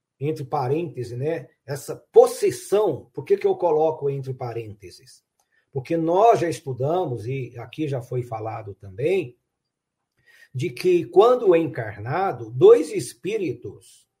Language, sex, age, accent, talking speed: Portuguese, male, 50-69, Brazilian, 120 wpm